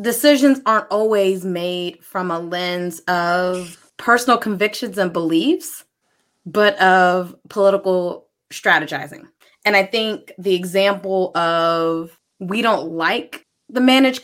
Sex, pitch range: female, 180-220 Hz